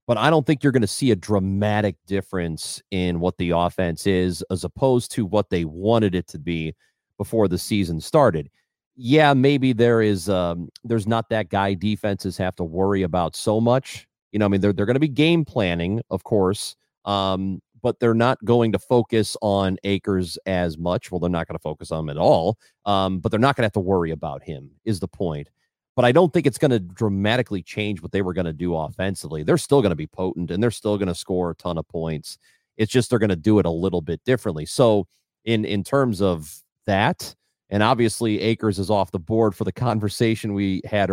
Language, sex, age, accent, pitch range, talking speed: English, male, 30-49, American, 90-115 Hz, 225 wpm